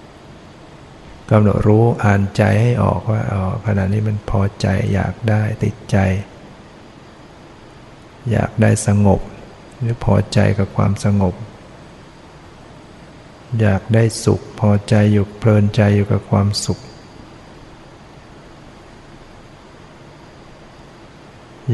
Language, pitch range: Thai, 100-115 Hz